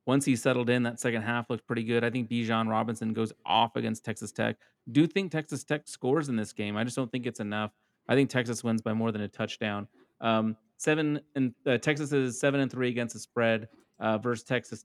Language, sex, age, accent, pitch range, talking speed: English, male, 30-49, American, 115-150 Hz, 235 wpm